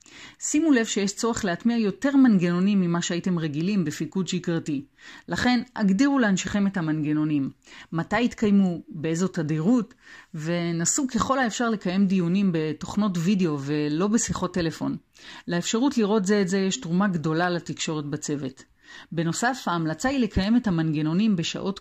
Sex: female